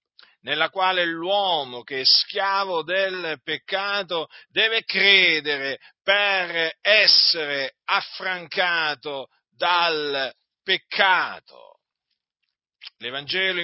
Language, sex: Italian, male